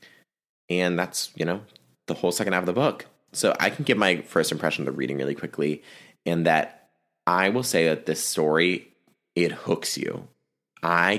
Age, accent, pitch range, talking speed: 20-39, American, 75-95 Hz, 190 wpm